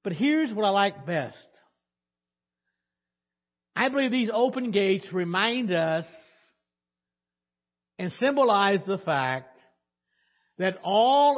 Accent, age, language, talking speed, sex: American, 60-79, English, 100 wpm, male